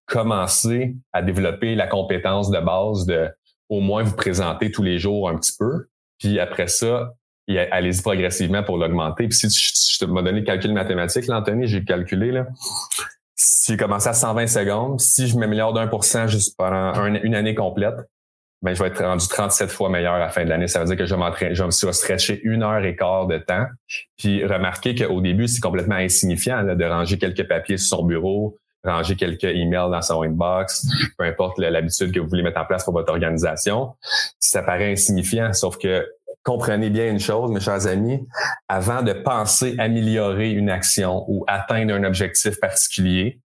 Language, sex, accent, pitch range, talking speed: French, male, Canadian, 90-110 Hz, 200 wpm